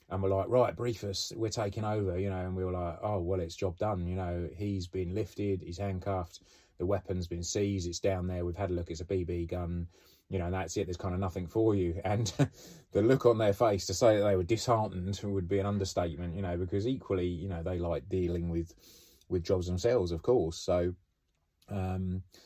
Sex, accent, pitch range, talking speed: male, British, 90-105 Hz, 225 wpm